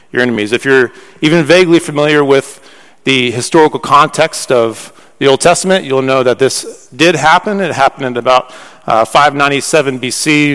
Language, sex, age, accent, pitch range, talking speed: English, male, 40-59, American, 130-160 Hz, 155 wpm